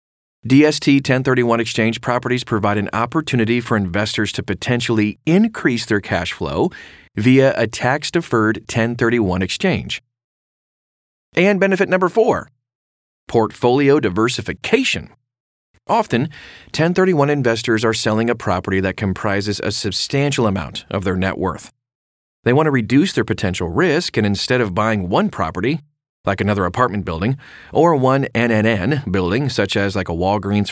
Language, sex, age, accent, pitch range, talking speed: English, male, 40-59, American, 100-130 Hz, 130 wpm